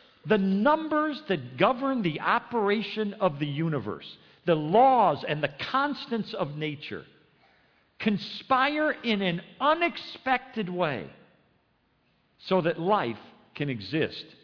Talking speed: 110 wpm